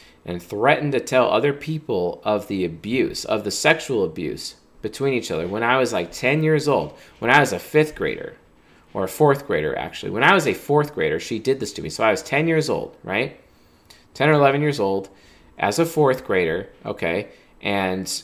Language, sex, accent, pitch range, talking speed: English, male, American, 95-120 Hz, 205 wpm